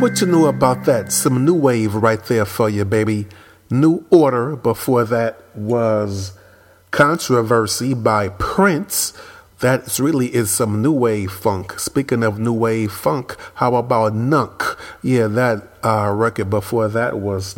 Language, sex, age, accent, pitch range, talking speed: English, male, 40-59, American, 105-125 Hz, 145 wpm